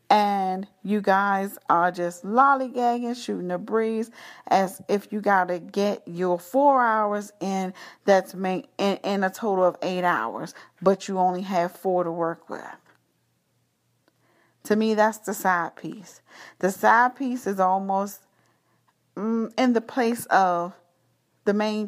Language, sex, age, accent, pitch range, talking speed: English, female, 40-59, American, 180-220 Hz, 145 wpm